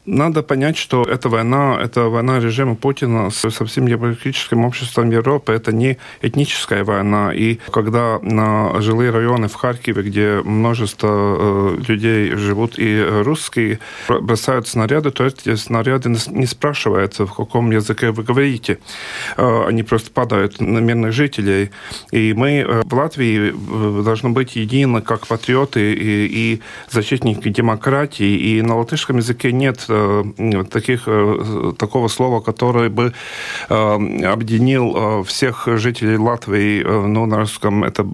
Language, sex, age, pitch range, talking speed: Russian, male, 40-59, 110-130 Hz, 125 wpm